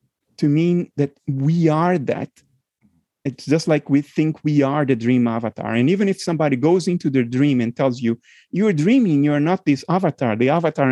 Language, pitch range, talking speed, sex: English, 135-200 Hz, 190 wpm, male